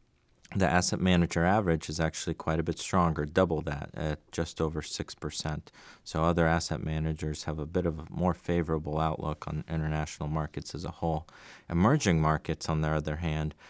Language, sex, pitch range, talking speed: English, male, 80-90 Hz, 175 wpm